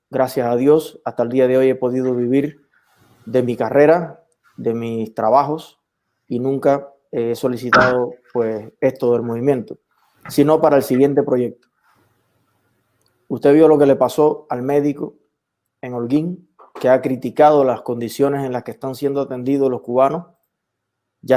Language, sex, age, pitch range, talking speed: Spanish, male, 20-39, 125-155 Hz, 150 wpm